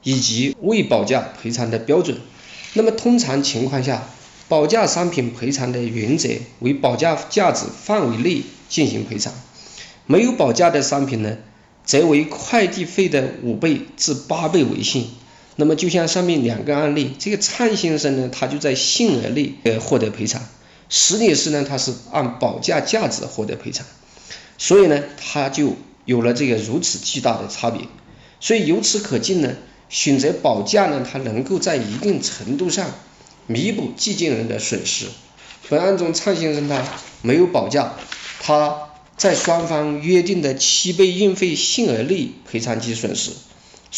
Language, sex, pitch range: Chinese, male, 120-170 Hz